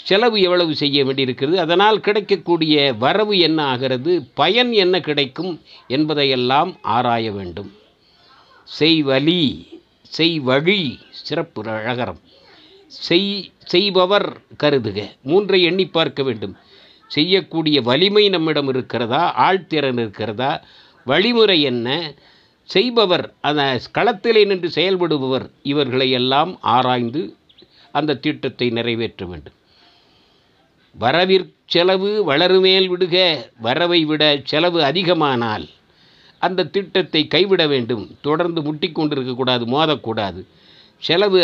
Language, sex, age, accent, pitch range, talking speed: Tamil, male, 60-79, native, 130-185 Hz, 90 wpm